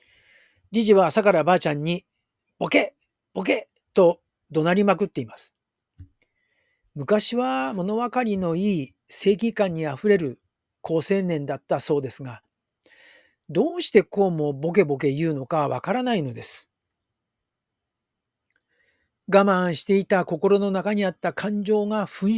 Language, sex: Japanese, male